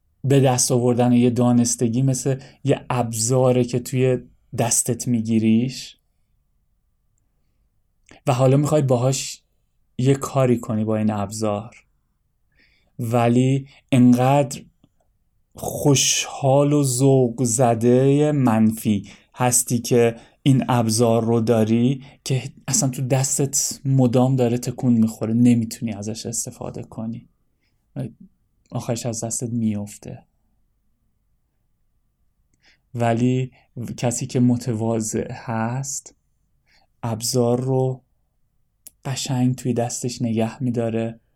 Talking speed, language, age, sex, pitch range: 90 wpm, Persian, 30-49, male, 110-130 Hz